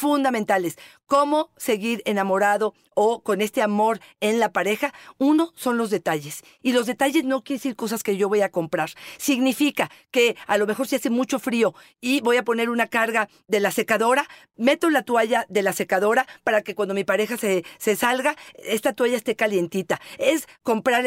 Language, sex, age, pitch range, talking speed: Spanish, female, 40-59, 215-275 Hz, 185 wpm